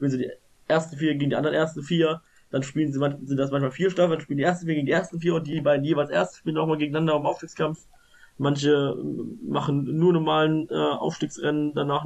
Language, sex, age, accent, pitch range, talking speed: German, male, 20-39, German, 130-155 Hz, 225 wpm